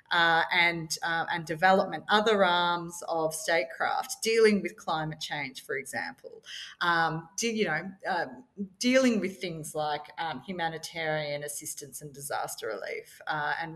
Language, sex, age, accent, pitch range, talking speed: English, female, 30-49, Australian, 165-200 Hz, 140 wpm